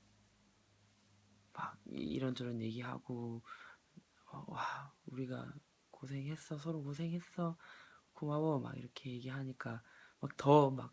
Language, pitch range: Korean, 115-140 Hz